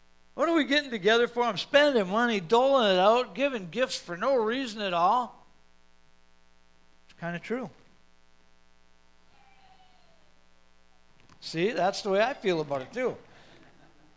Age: 60-79